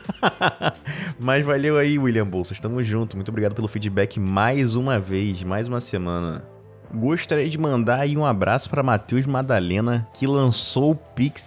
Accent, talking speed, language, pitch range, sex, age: Brazilian, 155 wpm, Portuguese, 105-135 Hz, male, 20-39